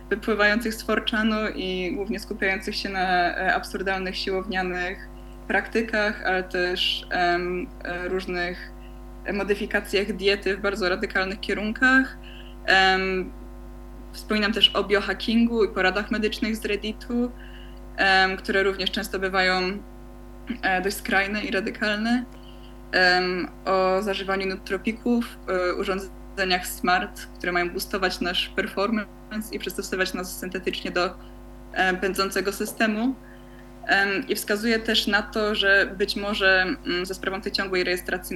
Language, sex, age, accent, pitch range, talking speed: Polish, female, 20-39, native, 185-210 Hz, 115 wpm